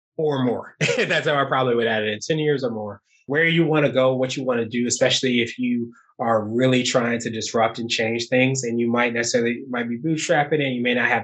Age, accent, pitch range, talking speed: 20-39, American, 120-135 Hz, 250 wpm